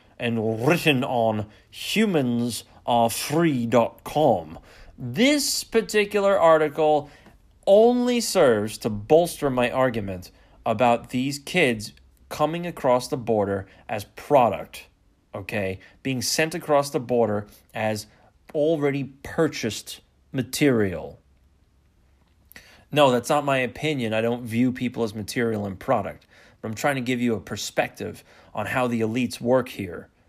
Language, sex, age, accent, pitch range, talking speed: English, male, 30-49, American, 105-135 Hz, 115 wpm